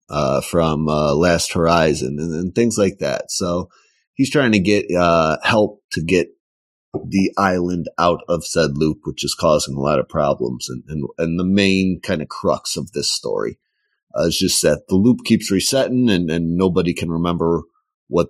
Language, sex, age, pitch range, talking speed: English, male, 30-49, 80-95 Hz, 185 wpm